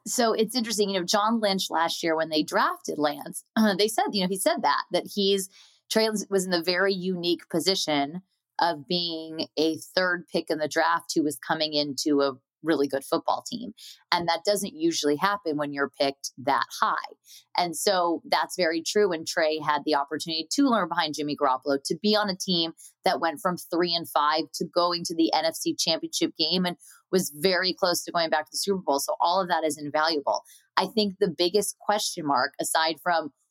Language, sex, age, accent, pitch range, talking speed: English, female, 20-39, American, 155-195 Hz, 205 wpm